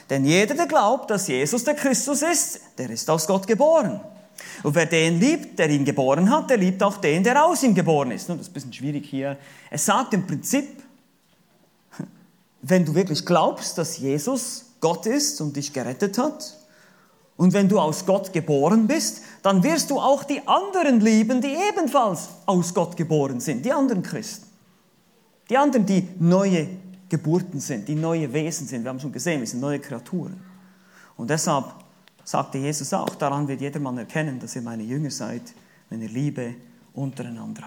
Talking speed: 180 wpm